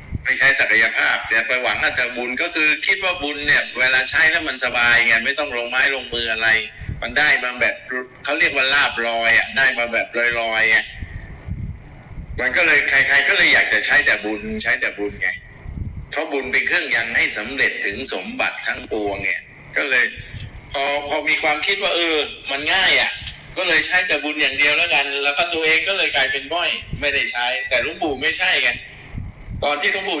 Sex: male